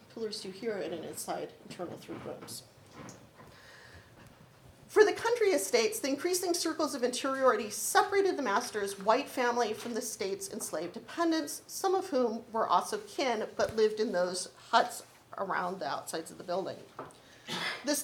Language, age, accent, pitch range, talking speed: English, 40-59, American, 205-290 Hz, 150 wpm